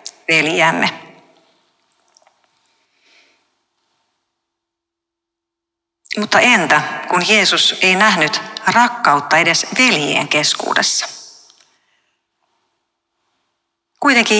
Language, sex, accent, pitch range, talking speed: Finnish, female, native, 155-220 Hz, 50 wpm